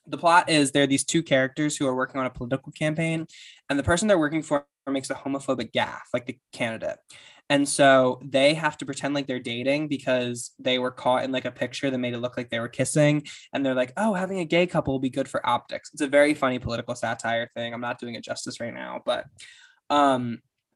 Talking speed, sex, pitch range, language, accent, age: 235 wpm, male, 125-150 Hz, English, American, 10-29